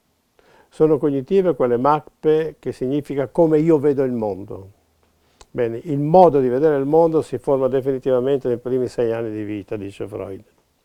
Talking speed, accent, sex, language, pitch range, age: 160 wpm, native, male, Italian, 120-155 Hz, 50-69